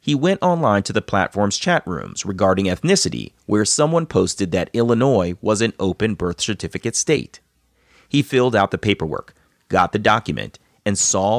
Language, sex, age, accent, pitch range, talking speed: English, male, 30-49, American, 100-140 Hz, 165 wpm